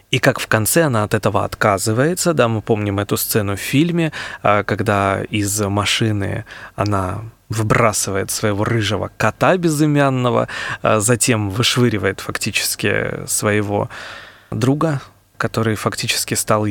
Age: 20-39